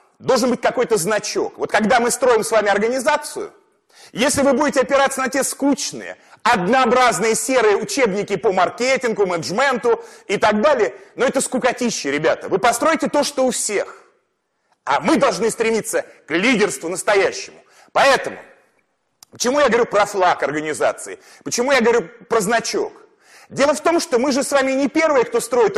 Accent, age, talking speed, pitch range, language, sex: native, 30-49, 160 wpm, 215-275 Hz, Russian, male